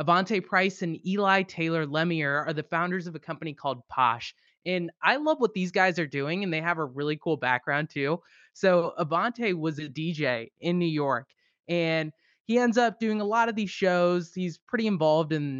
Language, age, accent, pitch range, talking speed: English, 20-39, American, 155-205 Hz, 200 wpm